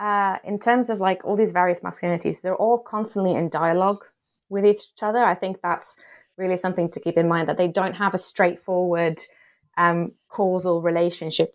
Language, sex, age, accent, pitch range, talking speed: English, female, 20-39, British, 170-195 Hz, 180 wpm